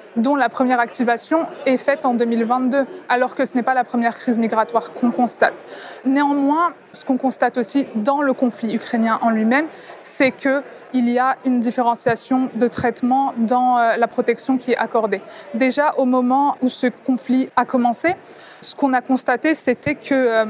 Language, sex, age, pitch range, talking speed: French, female, 20-39, 235-265 Hz, 170 wpm